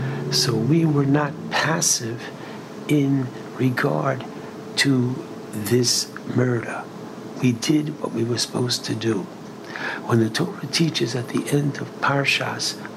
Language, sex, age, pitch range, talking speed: English, male, 60-79, 120-145 Hz, 125 wpm